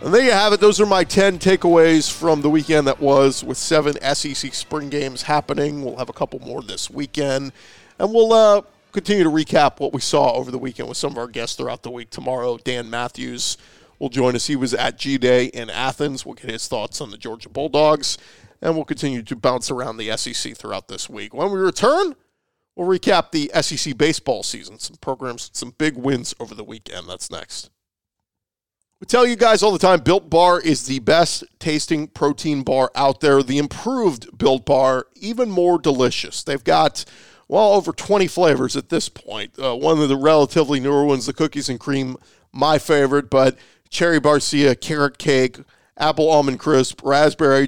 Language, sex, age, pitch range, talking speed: English, male, 40-59, 130-160 Hz, 190 wpm